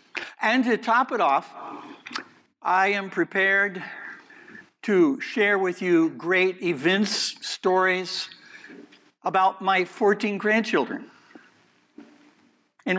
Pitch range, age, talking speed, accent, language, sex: 175-260 Hz, 60-79, 90 wpm, American, English, male